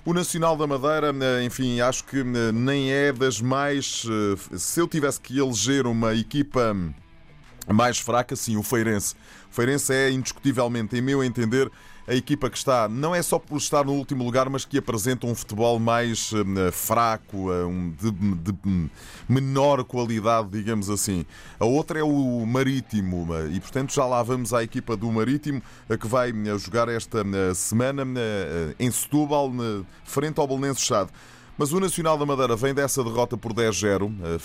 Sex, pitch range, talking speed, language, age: male, 105-135 Hz, 155 wpm, Portuguese, 20-39